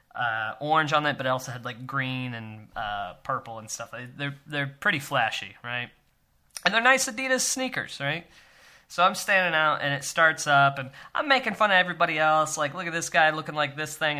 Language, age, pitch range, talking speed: English, 20-39, 130-165 Hz, 210 wpm